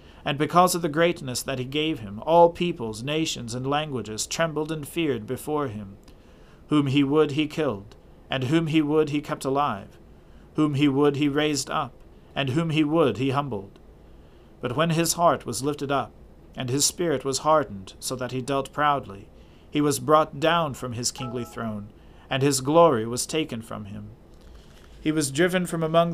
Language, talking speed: English, 185 wpm